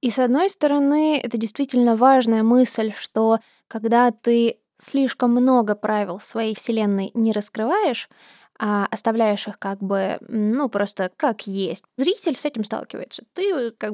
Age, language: 20-39, Russian